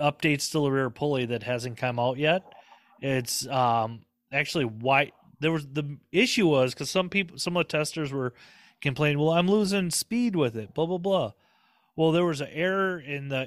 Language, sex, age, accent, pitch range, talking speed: English, male, 30-49, American, 135-170 Hz, 195 wpm